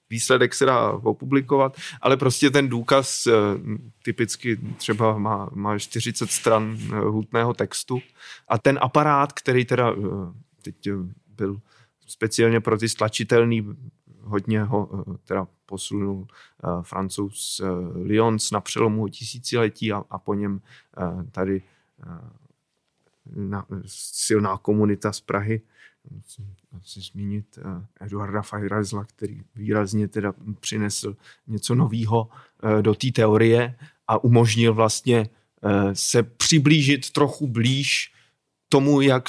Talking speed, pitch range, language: 110 wpm, 105-125 Hz, Czech